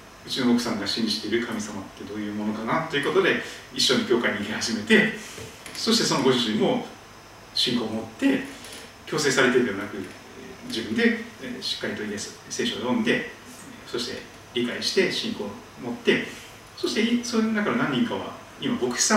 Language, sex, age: Japanese, male, 40-59